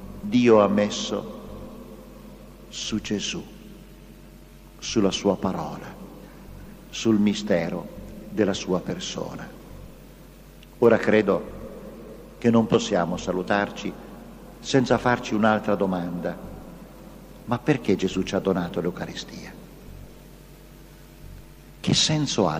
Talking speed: 90 wpm